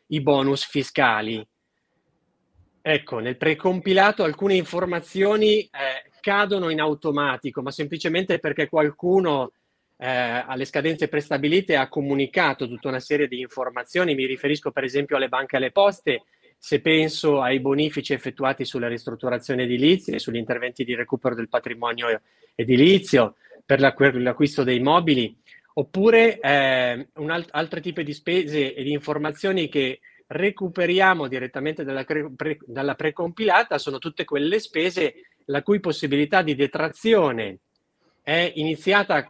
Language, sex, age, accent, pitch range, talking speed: Italian, male, 30-49, native, 130-170 Hz, 130 wpm